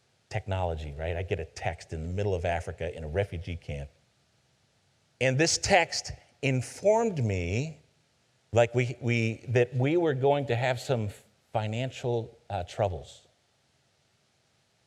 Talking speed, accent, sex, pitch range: 135 wpm, American, male, 95-130 Hz